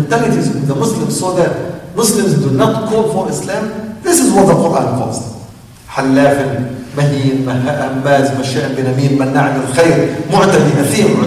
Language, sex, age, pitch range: English, male, 40-59, 140-220 Hz